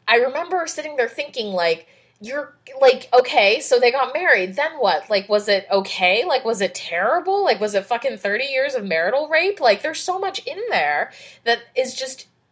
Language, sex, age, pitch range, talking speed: English, female, 20-39, 185-270 Hz, 195 wpm